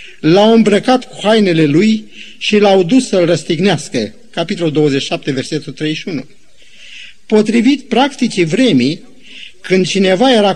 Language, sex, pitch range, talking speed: Romanian, male, 165-220 Hz, 115 wpm